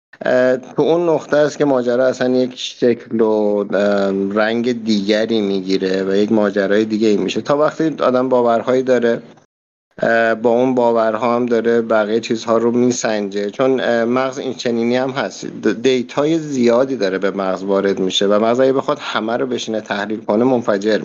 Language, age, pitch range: Persian, 50-69, 105-130 Hz